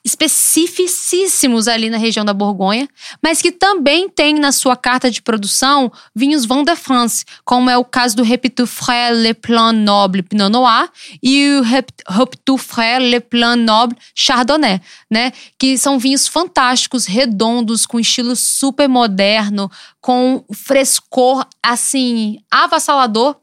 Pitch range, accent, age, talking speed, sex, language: 230-280 Hz, Brazilian, 10-29, 130 wpm, female, Portuguese